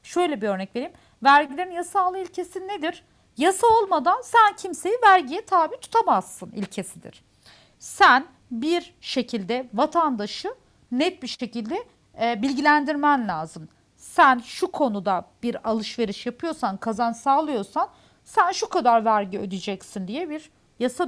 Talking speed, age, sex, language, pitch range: 115 wpm, 40-59, female, Turkish, 210-315 Hz